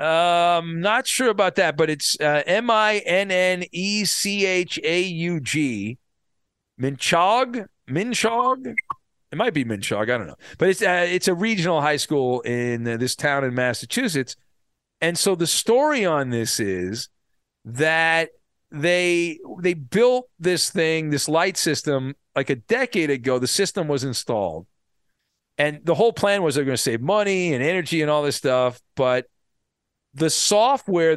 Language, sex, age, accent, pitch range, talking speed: English, male, 40-59, American, 140-190 Hz, 160 wpm